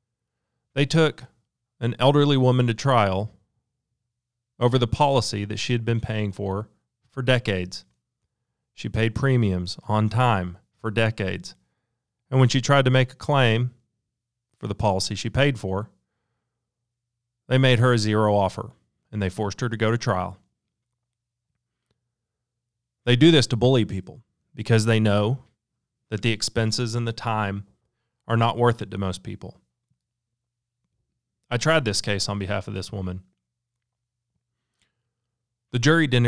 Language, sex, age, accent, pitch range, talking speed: English, male, 40-59, American, 105-120 Hz, 145 wpm